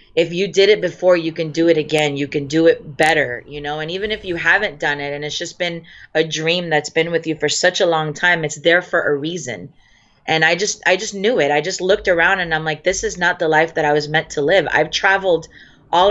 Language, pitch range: English, 150-180 Hz